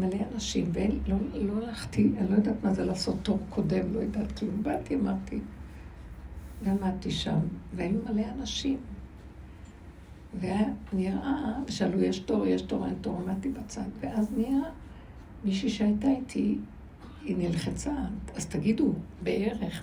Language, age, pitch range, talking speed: Hebrew, 60-79, 170-225 Hz, 130 wpm